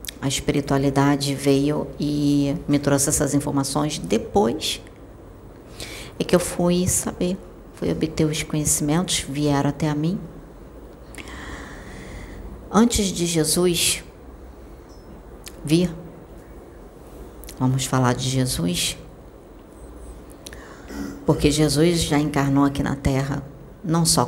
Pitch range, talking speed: 125-155 Hz, 95 wpm